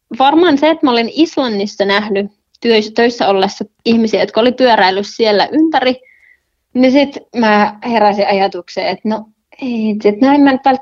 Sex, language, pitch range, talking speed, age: female, Finnish, 200-240 Hz, 135 wpm, 20-39